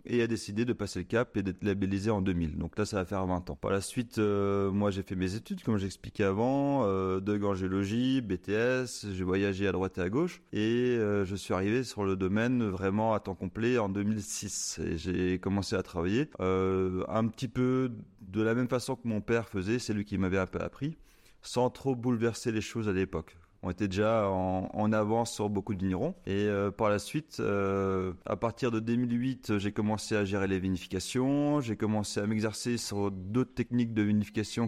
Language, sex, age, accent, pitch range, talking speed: French, male, 30-49, French, 95-115 Hz, 210 wpm